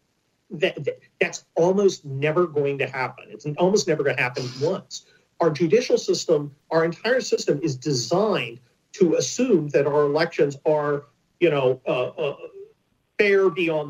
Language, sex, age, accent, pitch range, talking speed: English, male, 40-59, American, 140-210 Hz, 145 wpm